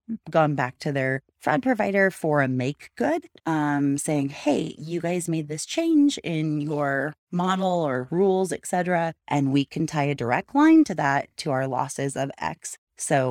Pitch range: 135-175 Hz